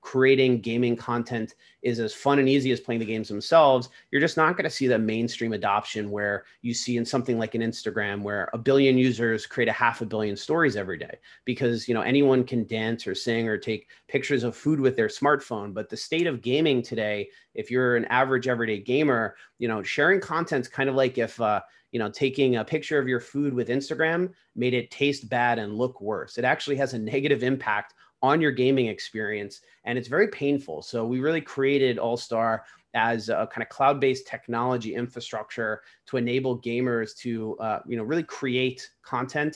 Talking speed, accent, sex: 205 wpm, American, male